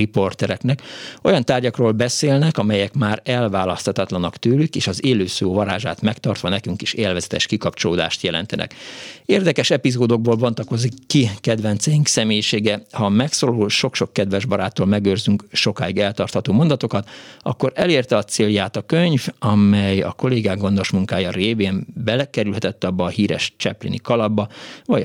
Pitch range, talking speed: 100-125 Hz, 130 wpm